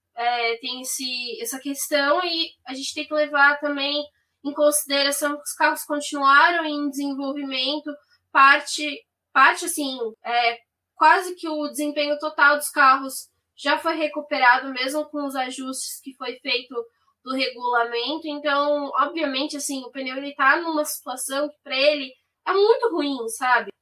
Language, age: Portuguese, 10-29